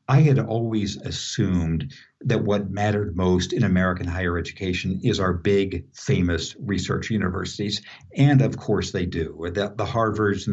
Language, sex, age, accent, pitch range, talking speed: English, male, 60-79, American, 90-115 Hz, 155 wpm